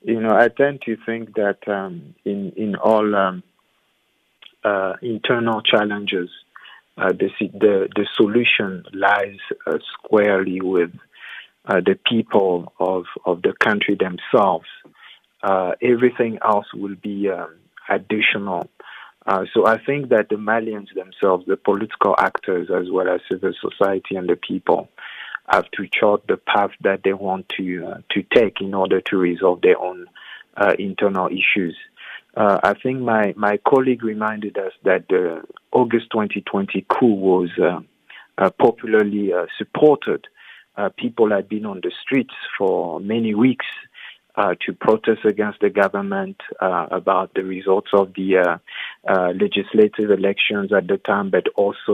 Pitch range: 95-115 Hz